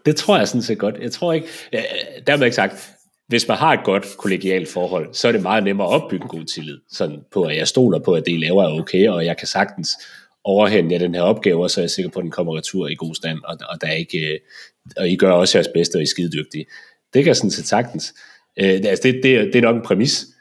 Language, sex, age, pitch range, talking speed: Danish, male, 30-49, 90-120 Hz, 265 wpm